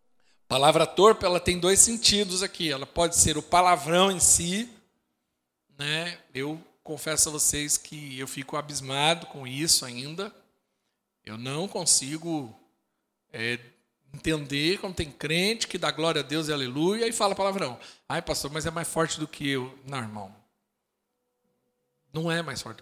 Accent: Brazilian